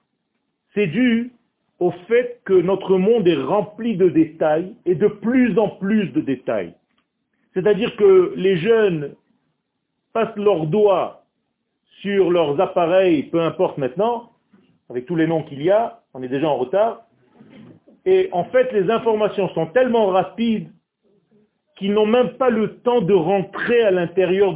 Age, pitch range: 40-59, 180-230 Hz